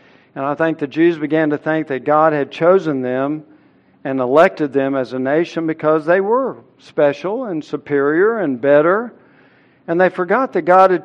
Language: English